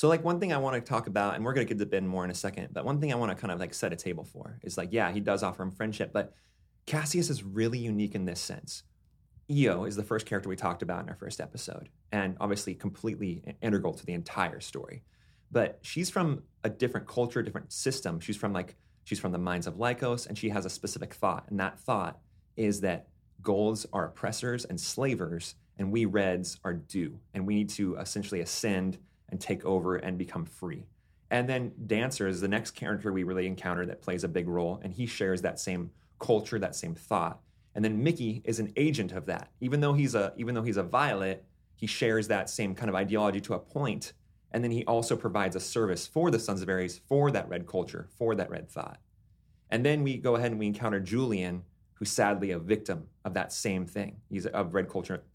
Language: English